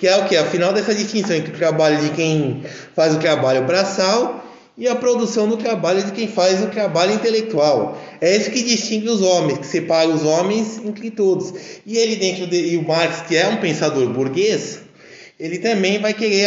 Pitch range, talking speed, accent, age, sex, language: 160-220 Hz, 200 wpm, Brazilian, 20-39, male, Portuguese